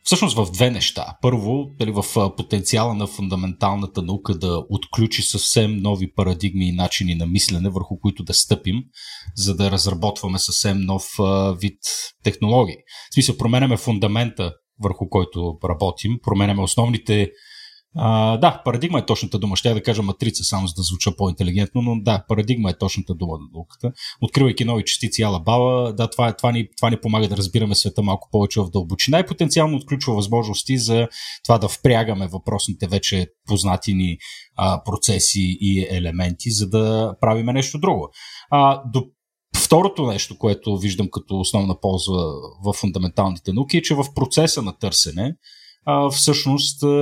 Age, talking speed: 30-49, 160 wpm